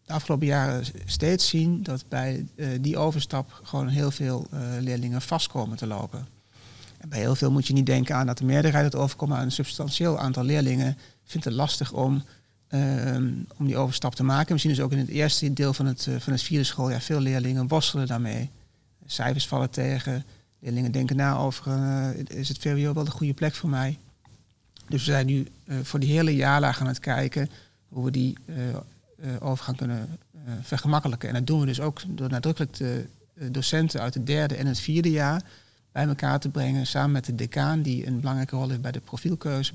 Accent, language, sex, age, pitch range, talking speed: Dutch, Dutch, male, 40-59, 125-145 Hz, 205 wpm